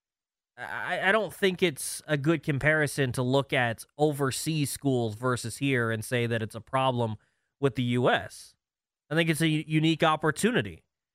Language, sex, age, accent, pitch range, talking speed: English, male, 20-39, American, 125-160 Hz, 155 wpm